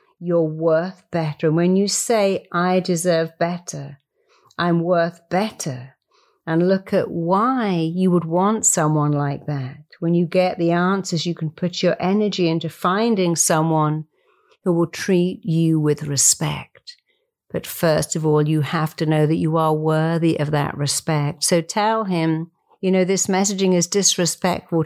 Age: 50-69